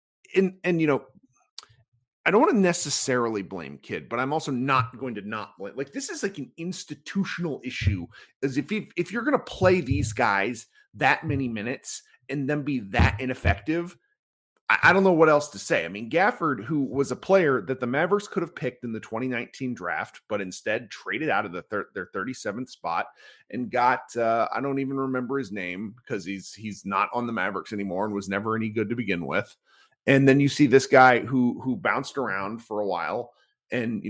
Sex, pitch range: male, 110-155 Hz